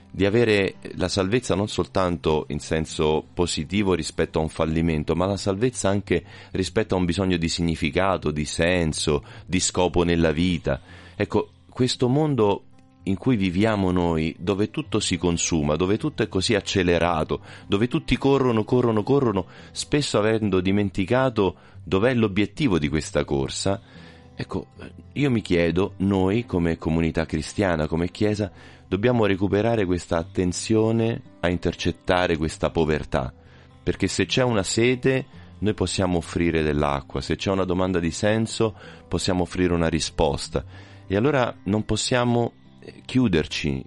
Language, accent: Italian, native